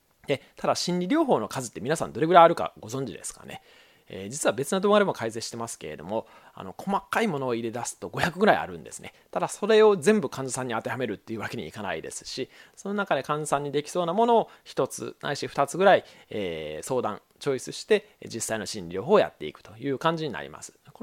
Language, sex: Japanese, male